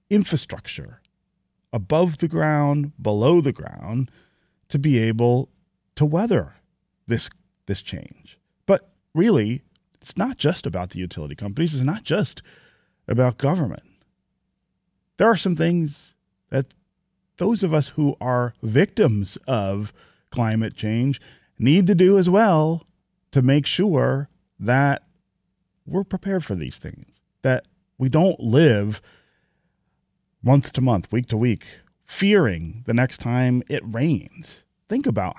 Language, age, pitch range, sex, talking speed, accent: English, 40-59, 110-155 Hz, male, 125 wpm, American